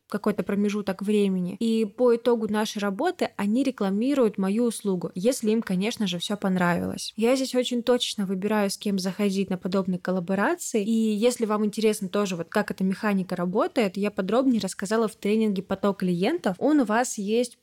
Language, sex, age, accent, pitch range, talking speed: Russian, female, 20-39, native, 195-235 Hz, 170 wpm